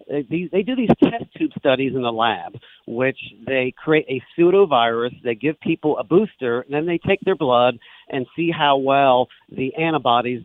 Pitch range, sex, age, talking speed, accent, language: 125-165 Hz, male, 50-69, 180 wpm, American, English